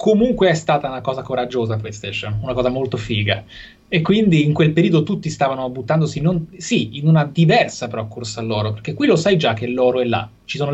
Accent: native